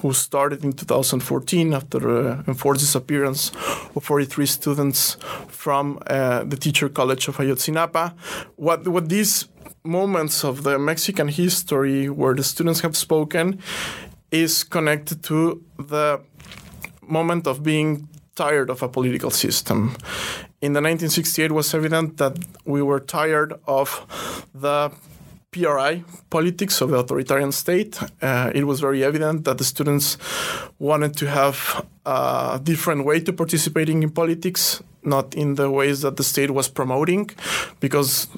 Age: 20-39